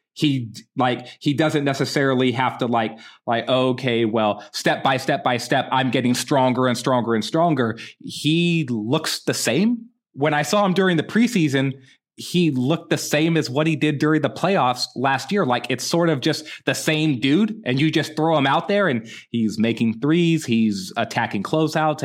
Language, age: English, 30-49